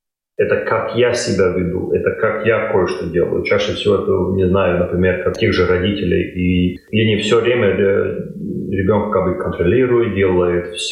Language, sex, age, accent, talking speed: Russian, male, 30-49, native, 155 wpm